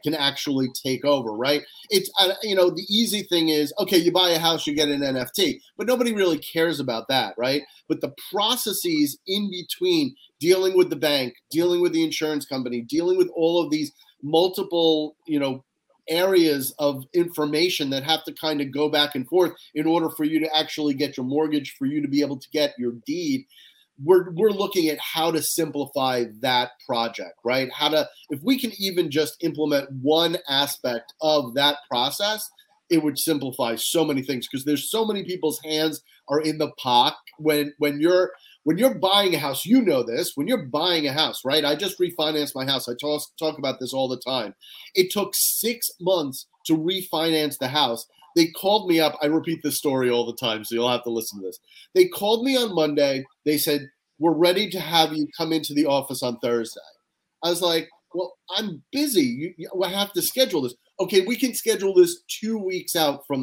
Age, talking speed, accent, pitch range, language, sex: 30-49, 200 wpm, American, 140-200 Hz, English, male